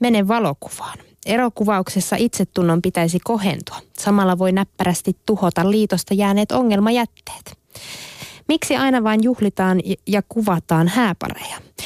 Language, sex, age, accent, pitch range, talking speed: Finnish, female, 20-39, native, 170-220 Hz, 100 wpm